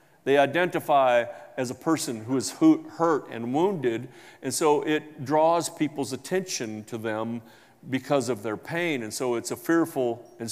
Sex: male